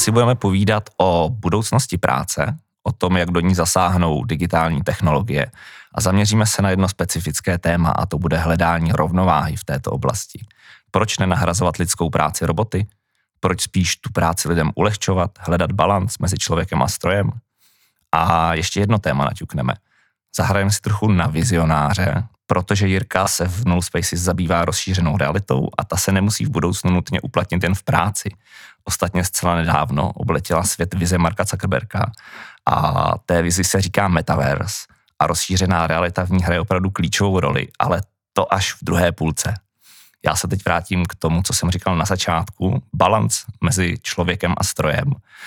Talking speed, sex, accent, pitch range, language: 160 wpm, male, native, 85-100 Hz, Czech